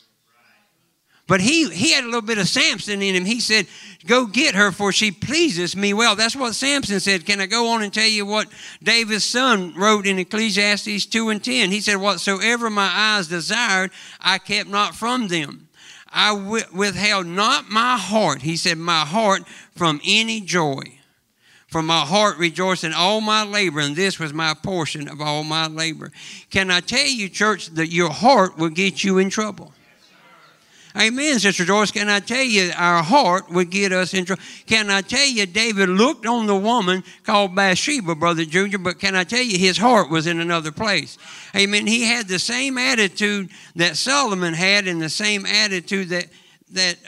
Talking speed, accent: 185 wpm, American